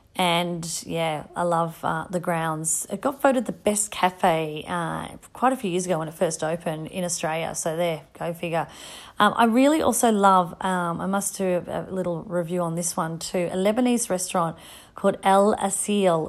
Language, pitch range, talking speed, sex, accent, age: English, 175-205 Hz, 190 wpm, female, Australian, 30-49